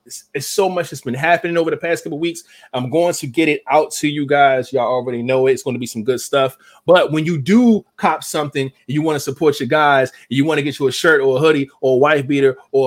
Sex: male